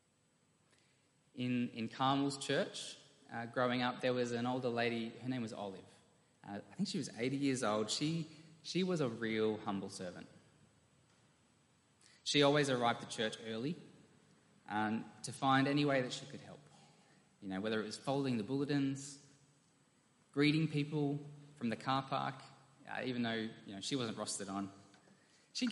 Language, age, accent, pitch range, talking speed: English, 20-39, Australian, 110-140 Hz, 165 wpm